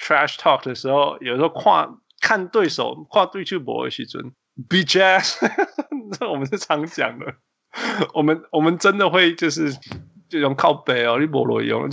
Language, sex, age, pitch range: Chinese, male, 20-39, 125-165 Hz